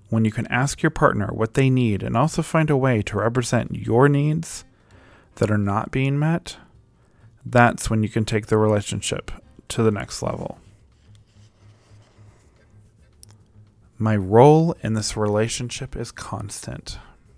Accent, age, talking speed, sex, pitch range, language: American, 20-39, 140 wpm, male, 105-125 Hz, English